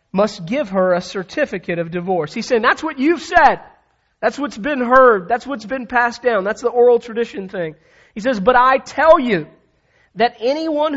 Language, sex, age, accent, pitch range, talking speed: English, male, 40-59, American, 190-240 Hz, 190 wpm